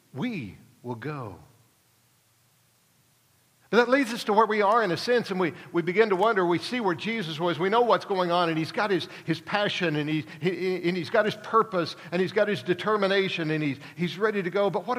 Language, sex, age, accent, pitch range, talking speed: English, male, 60-79, American, 140-220 Hz, 230 wpm